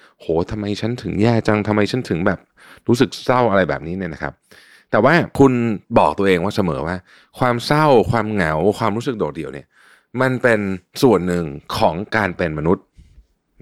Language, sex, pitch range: Thai, male, 85-120 Hz